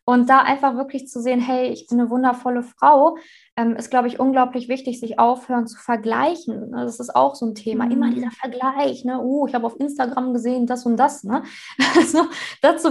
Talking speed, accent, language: 210 wpm, German, German